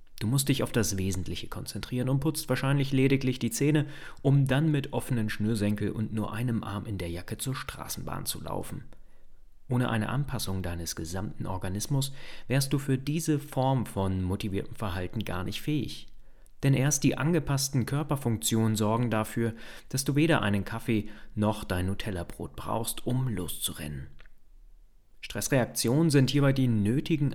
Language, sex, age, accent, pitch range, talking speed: German, male, 30-49, German, 105-135 Hz, 150 wpm